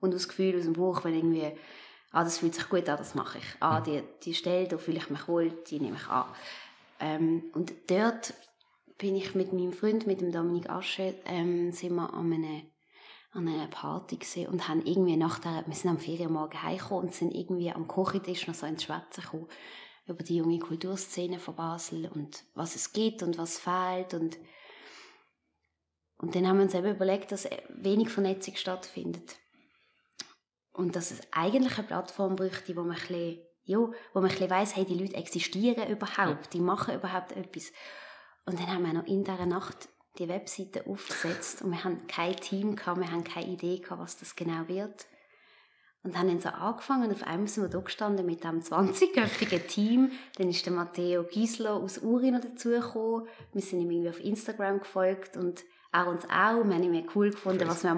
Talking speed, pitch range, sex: 190 wpm, 170-195 Hz, female